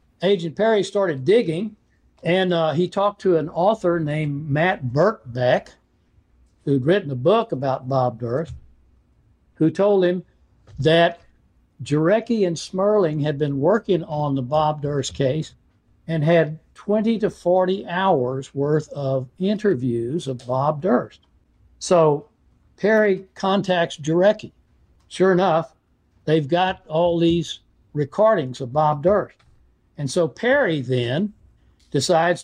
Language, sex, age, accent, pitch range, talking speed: English, male, 60-79, American, 135-180 Hz, 125 wpm